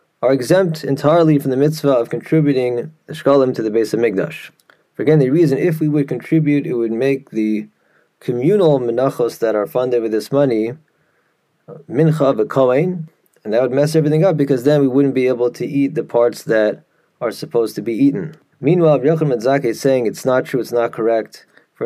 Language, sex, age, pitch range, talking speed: English, male, 20-39, 115-155 Hz, 200 wpm